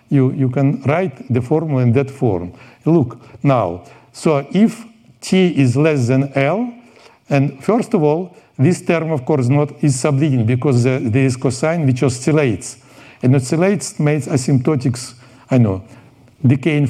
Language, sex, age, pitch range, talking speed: French, male, 60-79, 125-160 Hz, 155 wpm